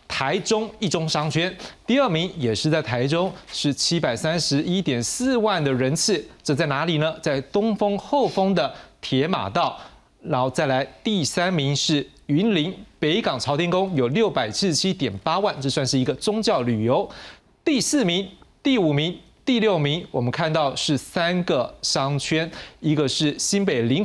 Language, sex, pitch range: Chinese, male, 130-185 Hz